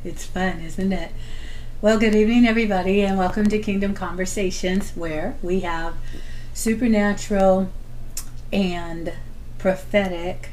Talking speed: 110 wpm